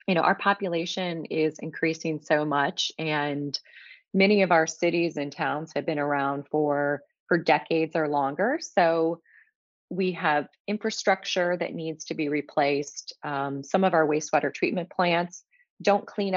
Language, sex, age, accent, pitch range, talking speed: English, female, 30-49, American, 145-180 Hz, 150 wpm